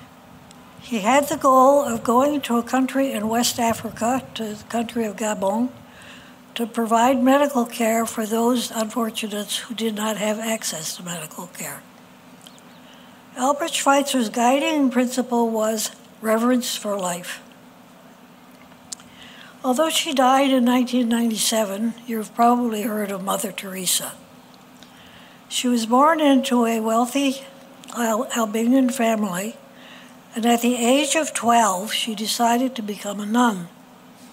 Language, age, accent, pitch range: English, 60-79, American, 225-260 Hz